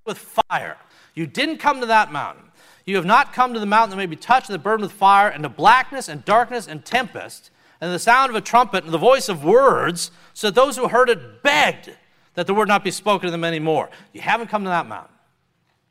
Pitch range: 130-195 Hz